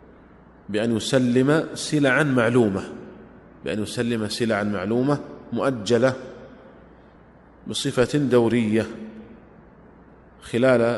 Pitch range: 110-135 Hz